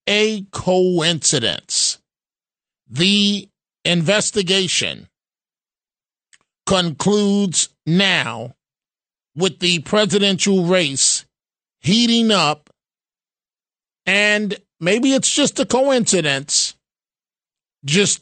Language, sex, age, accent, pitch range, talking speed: English, male, 50-69, American, 165-195 Hz, 65 wpm